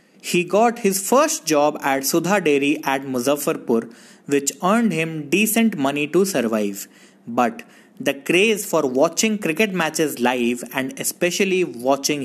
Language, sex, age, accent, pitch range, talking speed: English, male, 20-39, Indian, 135-215 Hz, 135 wpm